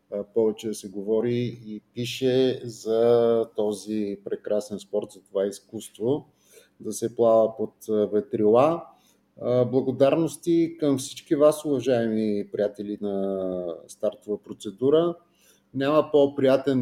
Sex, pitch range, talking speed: male, 105-130 Hz, 105 wpm